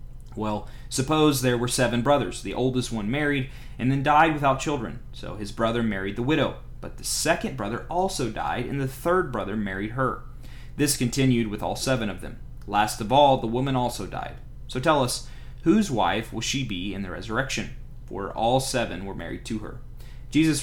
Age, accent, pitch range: 30-49, American, 105-130 Hz